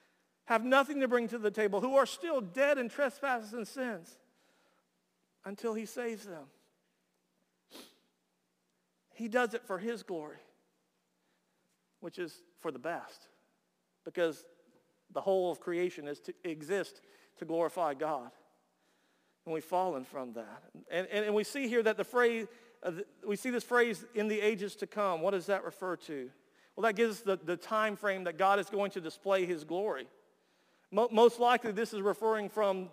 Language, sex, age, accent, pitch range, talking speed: English, male, 50-69, American, 155-215 Hz, 170 wpm